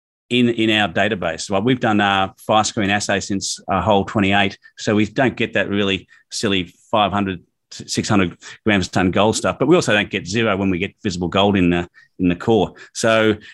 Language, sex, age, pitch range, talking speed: English, male, 30-49, 100-115 Hz, 210 wpm